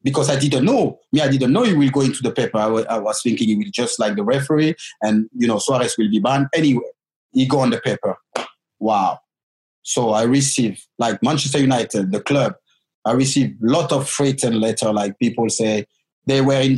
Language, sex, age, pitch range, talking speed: English, male, 30-49, 115-145 Hz, 220 wpm